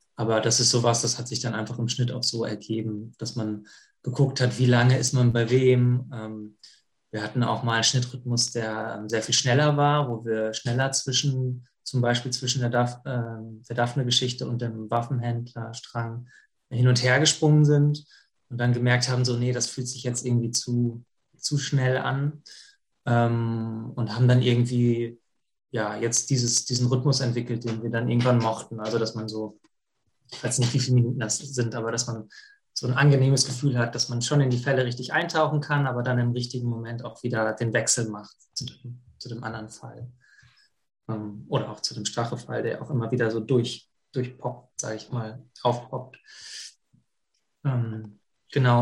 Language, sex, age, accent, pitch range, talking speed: German, male, 20-39, German, 115-130 Hz, 175 wpm